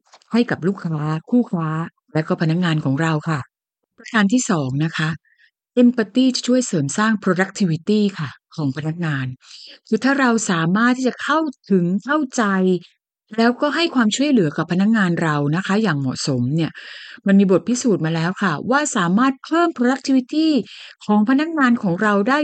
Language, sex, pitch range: Thai, female, 175-245 Hz